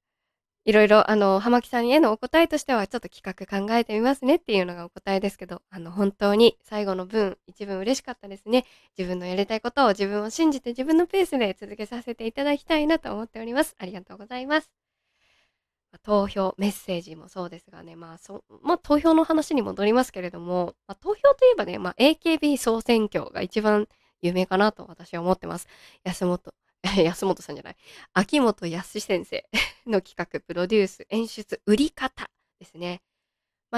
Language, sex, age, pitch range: Japanese, female, 20-39, 190-255 Hz